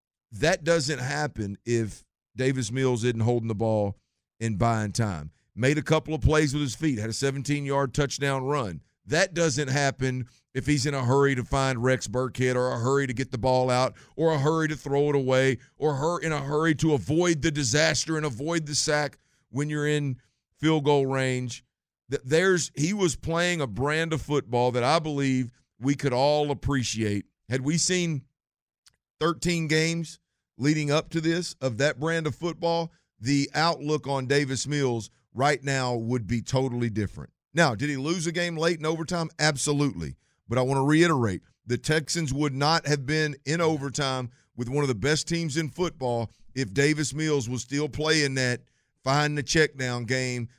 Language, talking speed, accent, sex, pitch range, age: English, 180 wpm, American, male, 125-155 Hz, 50-69